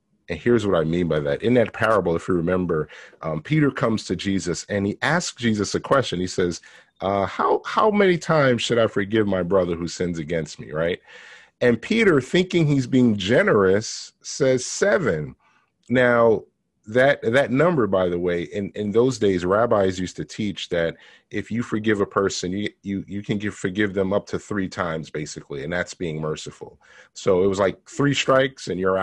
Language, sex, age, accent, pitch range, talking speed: English, male, 30-49, American, 90-120 Hz, 195 wpm